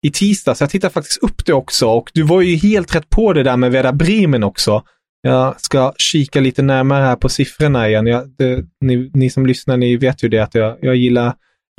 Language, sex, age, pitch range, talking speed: English, male, 30-49, 130-170 Hz, 230 wpm